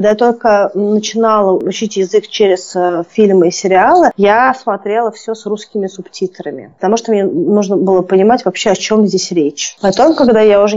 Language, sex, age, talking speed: Russian, female, 30-49, 175 wpm